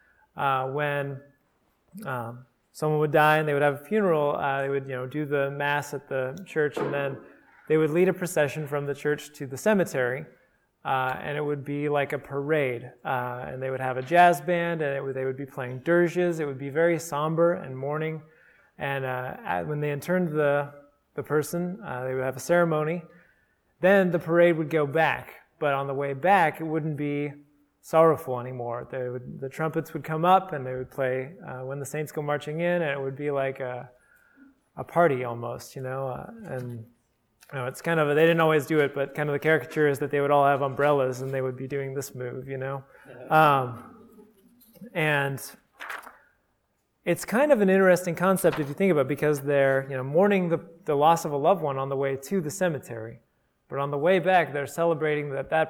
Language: English